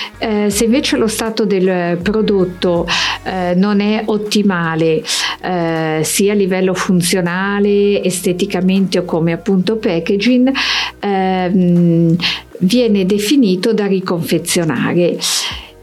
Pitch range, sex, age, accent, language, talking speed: 170-210 Hz, female, 50-69, native, Italian, 85 wpm